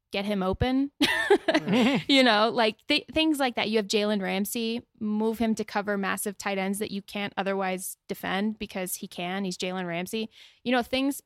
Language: English